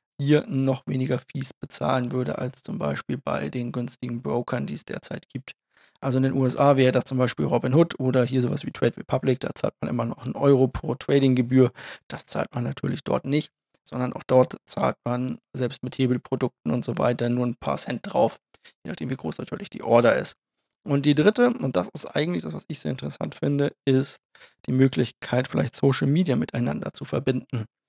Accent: German